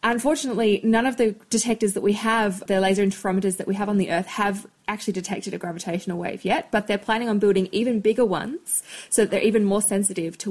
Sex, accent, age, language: female, Australian, 20-39, English